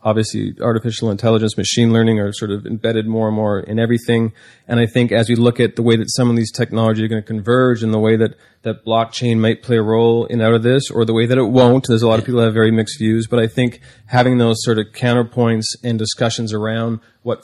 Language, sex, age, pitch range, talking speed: English, male, 30-49, 105-120 Hz, 255 wpm